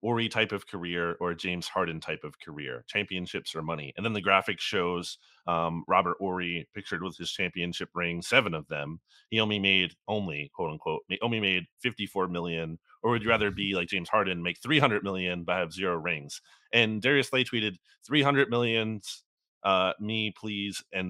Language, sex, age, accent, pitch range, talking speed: English, male, 30-49, American, 95-145 Hz, 185 wpm